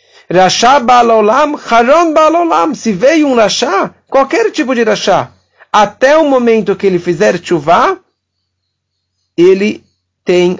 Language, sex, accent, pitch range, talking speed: English, male, Brazilian, 140-210 Hz, 115 wpm